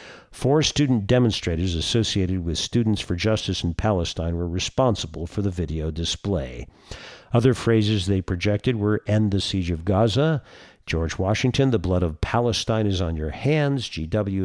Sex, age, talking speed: male, 50-69, 155 wpm